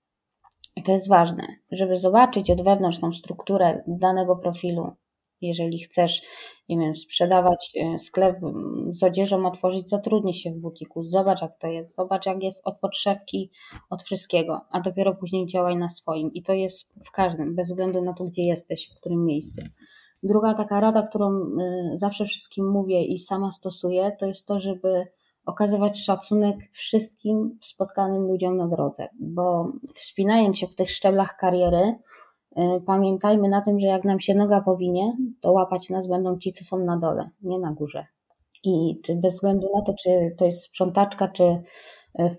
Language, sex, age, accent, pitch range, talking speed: Polish, female, 20-39, native, 175-195 Hz, 165 wpm